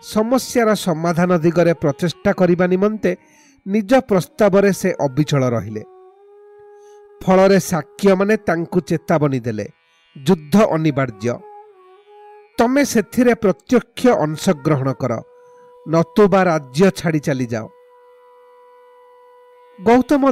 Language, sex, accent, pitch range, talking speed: English, male, Indian, 175-265 Hz, 90 wpm